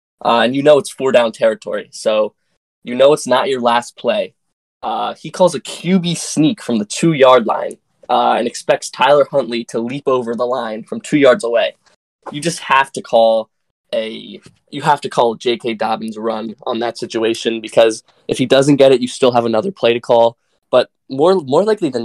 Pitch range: 115-130 Hz